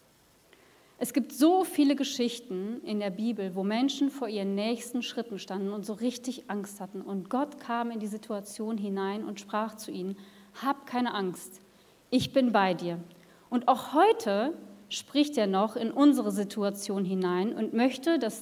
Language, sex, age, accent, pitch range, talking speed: German, female, 40-59, German, 195-250 Hz, 165 wpm